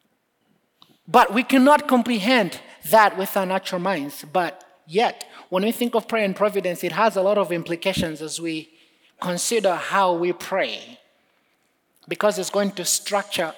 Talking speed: 155 wpm